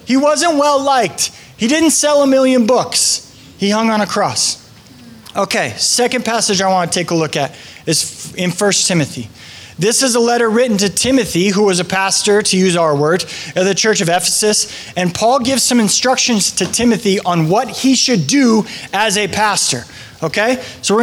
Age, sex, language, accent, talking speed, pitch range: 20-39, male, English, American, 190 wpm, 180-255 Hz